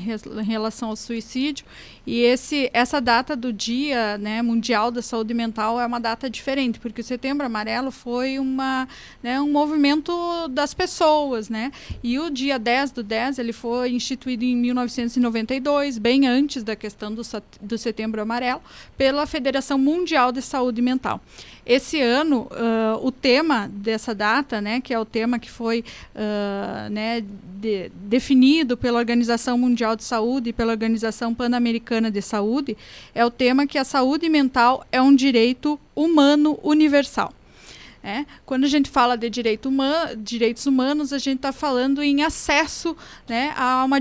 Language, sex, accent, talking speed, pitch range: Portuguese, female, Brazilian, 160 wpm, 230-275 Hz